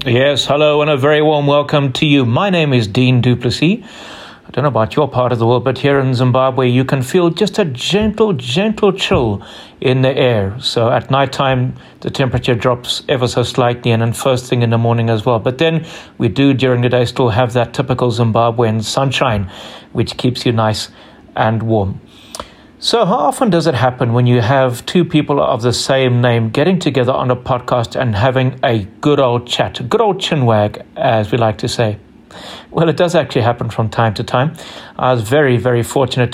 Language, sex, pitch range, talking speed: English, male, 120-140 Hz, 205 wpm